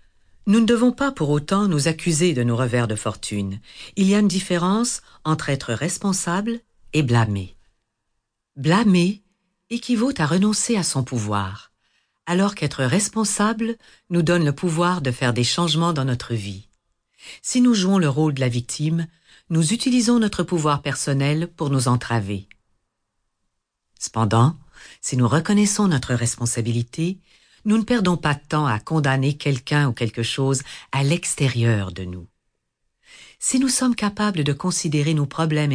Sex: female